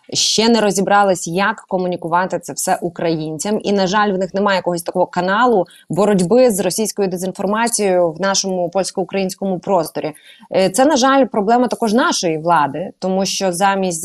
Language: Ukrainian